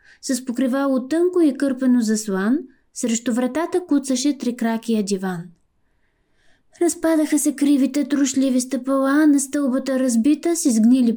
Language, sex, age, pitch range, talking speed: Bulgarian, female, 20-39, 245-305 Hz, 115 wpm